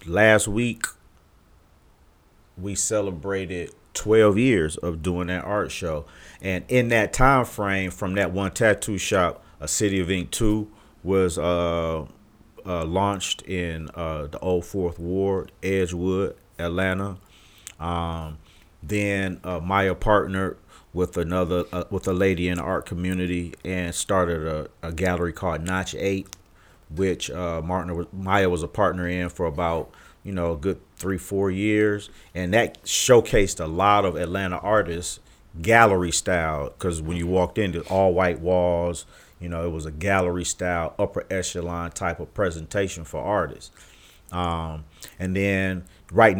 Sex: male